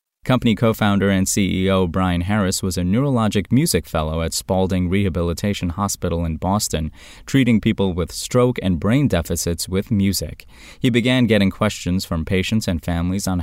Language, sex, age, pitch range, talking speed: English, male, 20-39, 90-120 Hz, 155 wpm